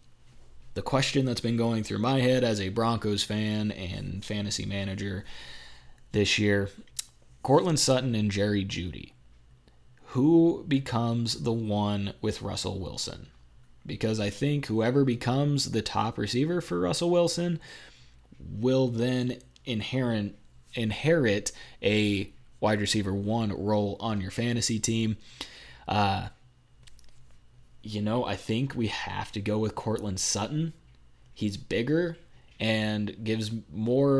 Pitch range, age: 100-120 Hz, 20-39